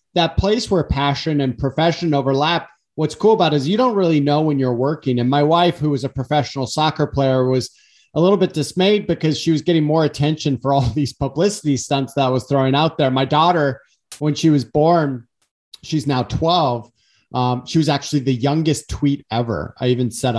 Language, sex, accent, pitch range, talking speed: English, male, American, 120-155 Hz, 205 wpm